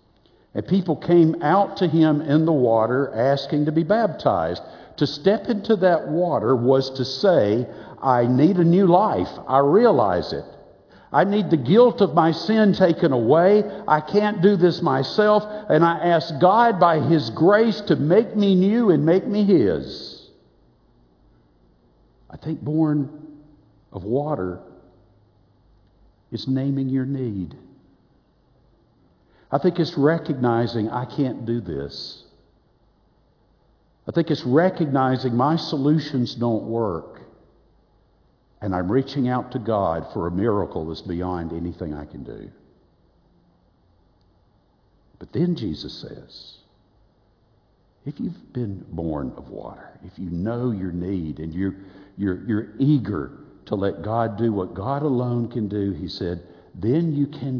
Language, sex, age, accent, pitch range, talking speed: English, male, 60-79, American, 100-165 Hz, 140 wpm